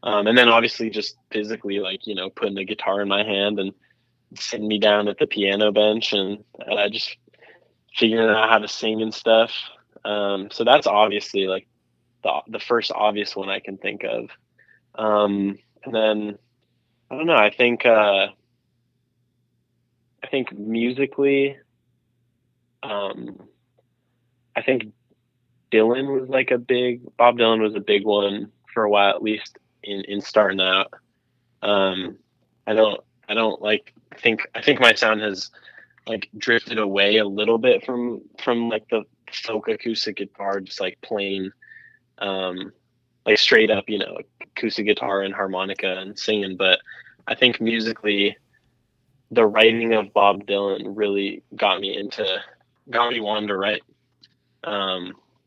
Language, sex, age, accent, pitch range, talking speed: English, male, 20-39, American, 100-120 Hz, 155 wpm